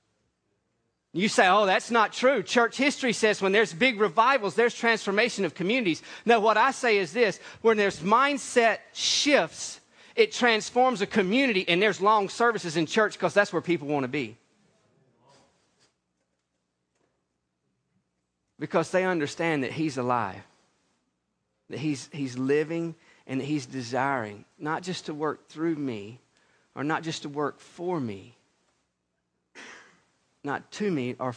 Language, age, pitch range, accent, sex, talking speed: English, 40-59, 130-195 Hz, American, male, 145 wpm